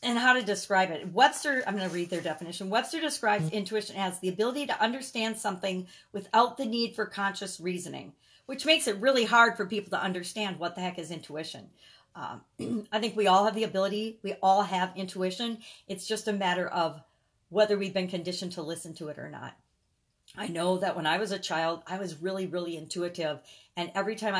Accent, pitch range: American, 170-210 Hz